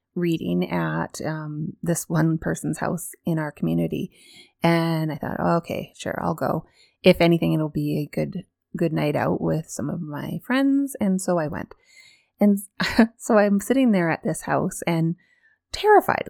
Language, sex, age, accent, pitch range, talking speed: English, female, 30-49, American, 165-220 Hz, 170 wpm